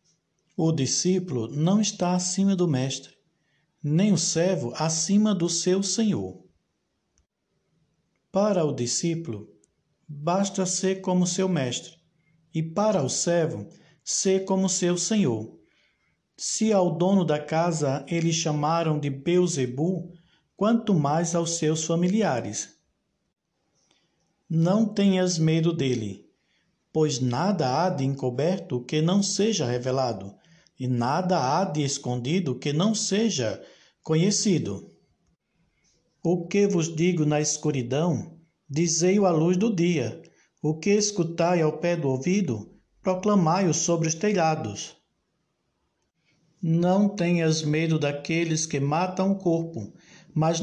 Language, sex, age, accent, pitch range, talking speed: Portuguese, male, 60-79, Brazilian, 155-185 Hz, 115 wpm